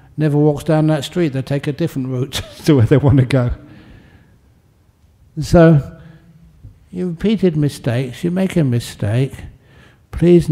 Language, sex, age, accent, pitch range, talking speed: English, male, 60-79, British, 115-150 Hz, 145 wpm